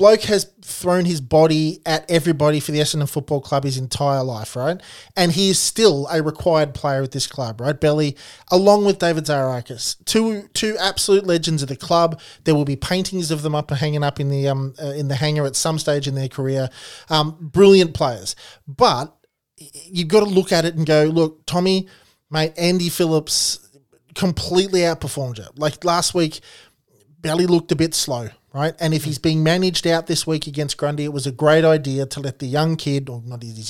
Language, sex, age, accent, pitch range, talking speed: English, male, 20-39, Australian, 140-170 Hz, 200 wpm